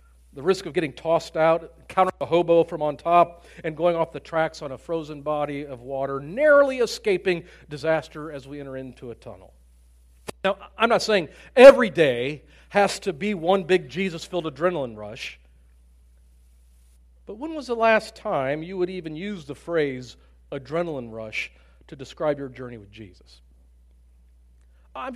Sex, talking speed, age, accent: male, 160 wpm, 40-59, American